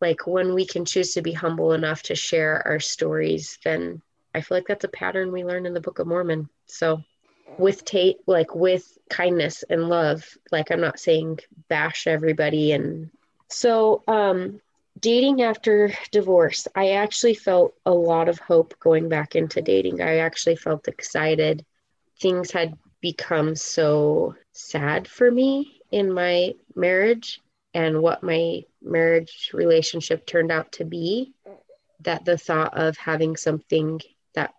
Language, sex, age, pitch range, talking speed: English, female, 20-39, 160-185 Hz, 155 wpm